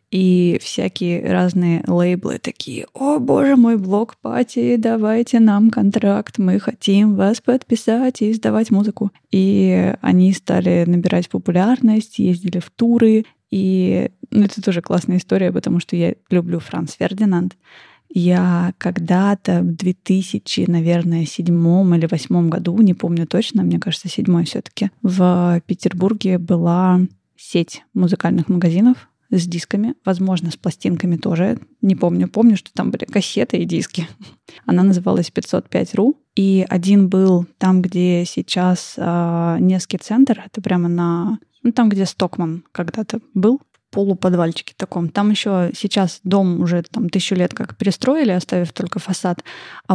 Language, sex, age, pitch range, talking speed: Russian, female, 20-39, 175-210 Hz, 135 wpm